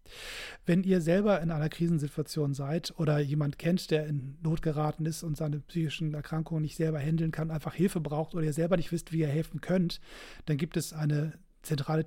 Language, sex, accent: German, male, German